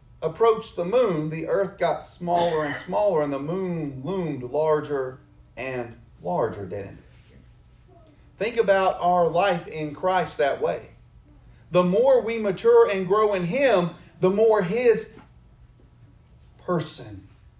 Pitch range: 120-170 Hz